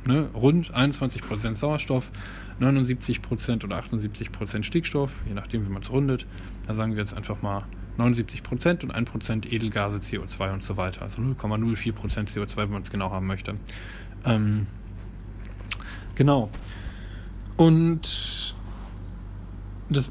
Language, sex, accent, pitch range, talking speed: German, male, German, 100-130 Hz, 120 wpm